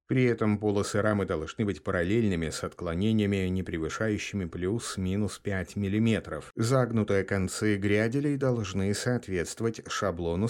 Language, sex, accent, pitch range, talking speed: Russian, male, native, 90-115 Hz, 115 wpm